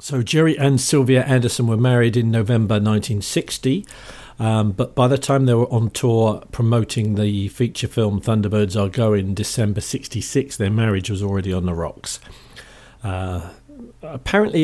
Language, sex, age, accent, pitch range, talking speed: English, male, 50-69, British, 100-125 Hz, 155 wpm